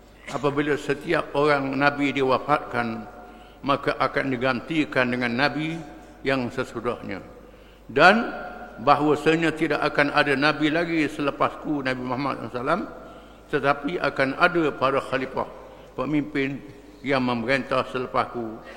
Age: 50-69